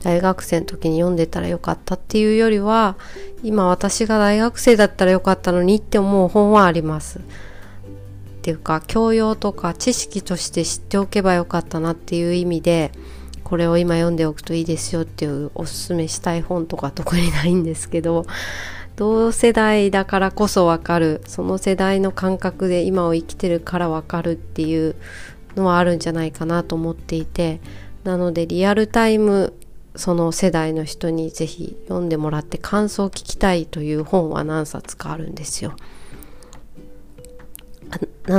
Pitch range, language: 160-190 Hz, Japanese